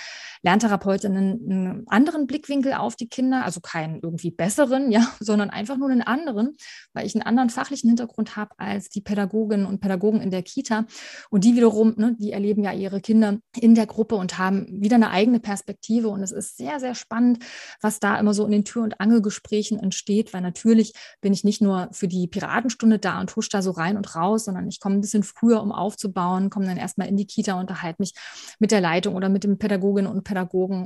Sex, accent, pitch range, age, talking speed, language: female, German, 185-220 Hz, 30-49, 215 wpm, German